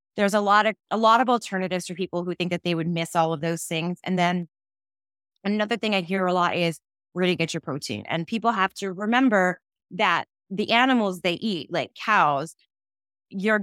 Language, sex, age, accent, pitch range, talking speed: English, female, 20-39, American, 160-195 Hz, 210 wpm